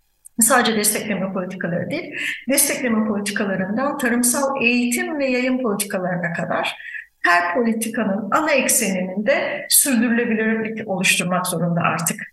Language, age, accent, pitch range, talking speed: Turkish, 50-69, native, 210-255 Hz, 100 wpm